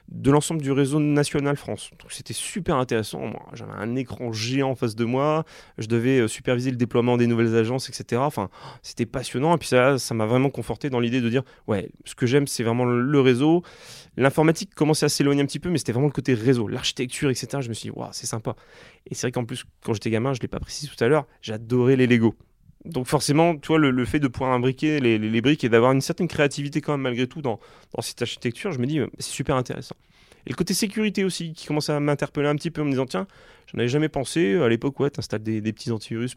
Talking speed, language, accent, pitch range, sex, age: 260 wpm, French, French, 120-150 Hz, male, 30-49